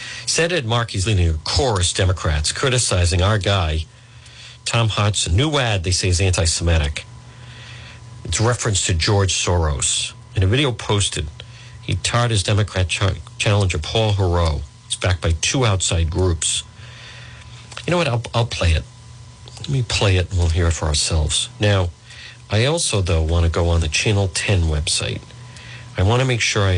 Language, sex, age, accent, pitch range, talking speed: English, male, 50-69, American, 95-120 Hz, 170 wpm